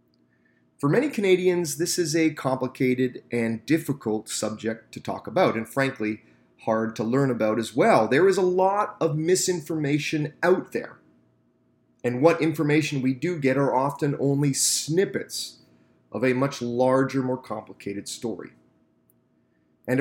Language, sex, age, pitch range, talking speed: English, male, 30-49, 110-150 Hz, 140 wpm